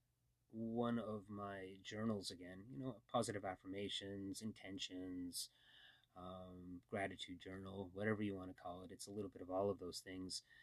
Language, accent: English, American